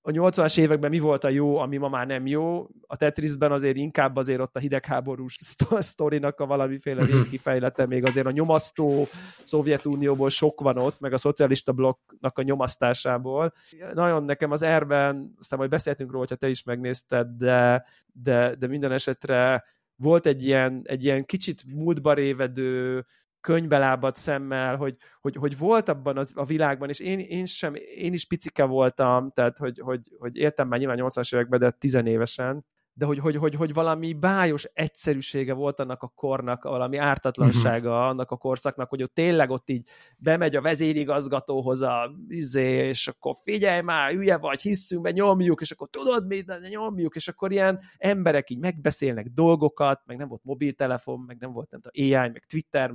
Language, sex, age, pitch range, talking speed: Hungarian, male, 30-49, 130-160 Hz, 170 wpm